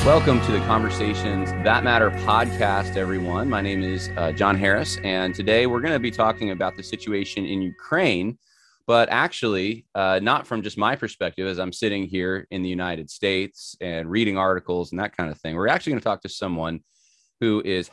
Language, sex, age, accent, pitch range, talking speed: English, male, 30-49, American, 90-110 Hz, 200 wpm